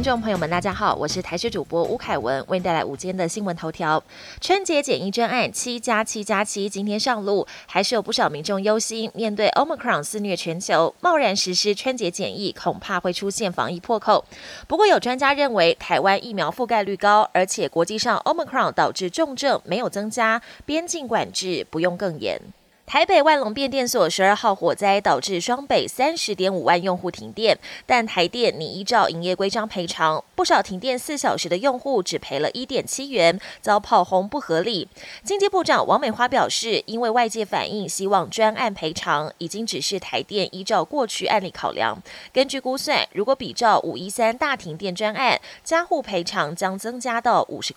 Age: 20-39